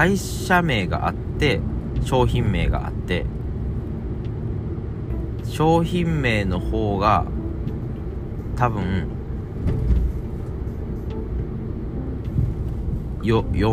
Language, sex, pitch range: Japanese, male, 85-115 Hz